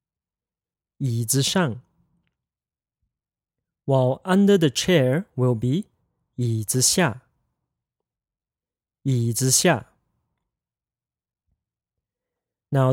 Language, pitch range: English, 120-155 Hz